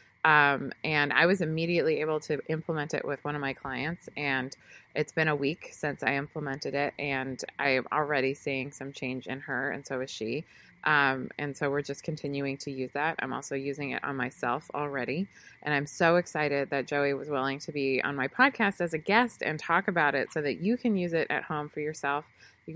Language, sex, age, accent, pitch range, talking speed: English, female, 20-39, American, 135-160 Hz, 220 wpm